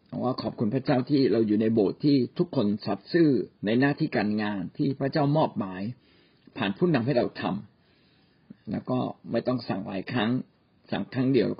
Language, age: Thai, 60-79